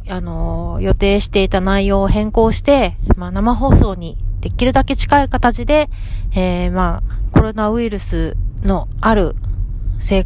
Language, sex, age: Japanese, female, 30-49